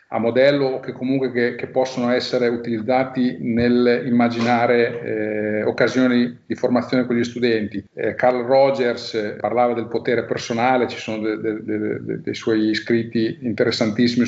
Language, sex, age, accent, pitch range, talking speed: Italian, male, 40-59, native, 115-130 Hz, 145 wpm